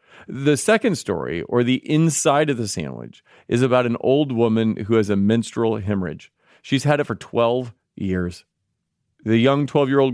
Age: 40-59